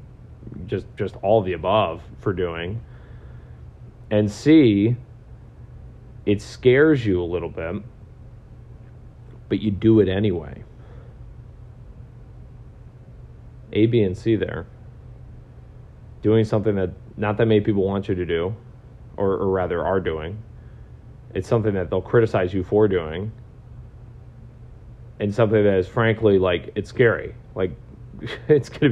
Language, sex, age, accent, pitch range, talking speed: English, male, 30-49, American, 95-115 Hz, 125 wpm